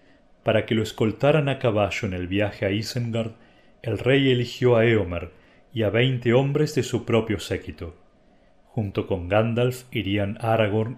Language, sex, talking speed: Spanish, male, 160 wpm